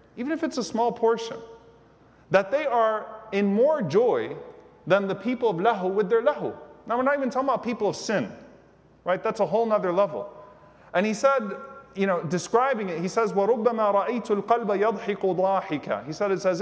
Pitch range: 175-225 Hz